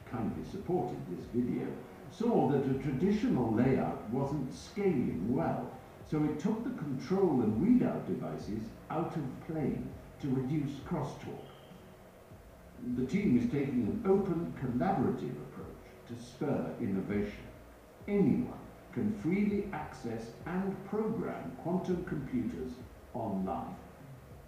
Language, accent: Croatian, British